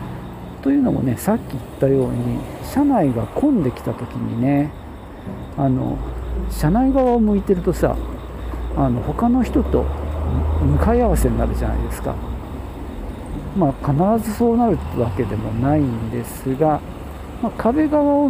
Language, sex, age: Japanese, male, 50-69